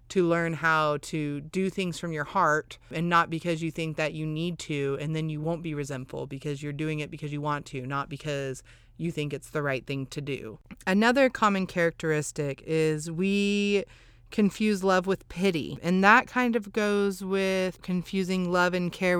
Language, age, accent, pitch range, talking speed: English, 30-49, American, 150-185 Hz, 190 wpm